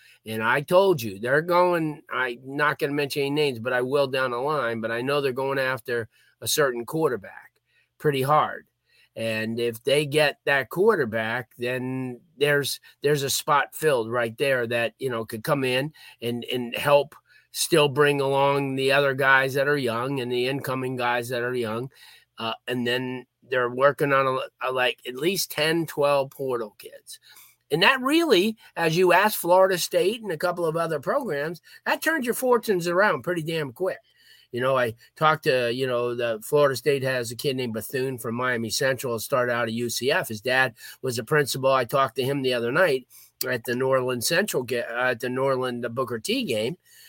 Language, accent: English, American